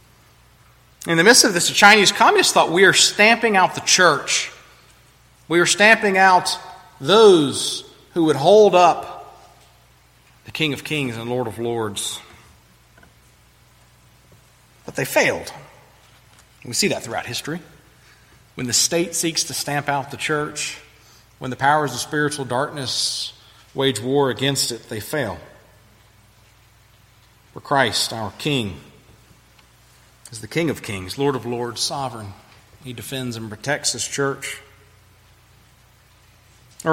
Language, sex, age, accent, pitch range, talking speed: English, male, 40-59, American, 110-150 Hz, 130 wpm